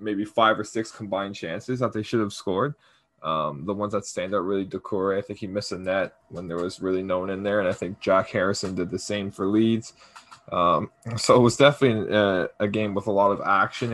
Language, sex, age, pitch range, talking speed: English, male, 20-39, 105-120 Hz, 240 wpm